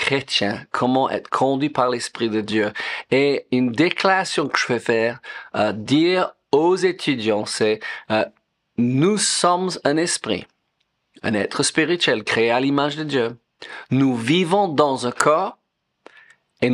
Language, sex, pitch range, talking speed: French, male, 120-175 Hz, 135 wpm